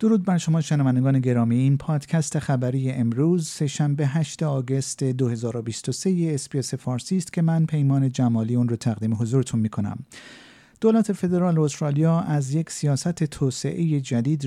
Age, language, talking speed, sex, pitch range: 50-69, Persian, 145 wpm, male, 115-160 Hz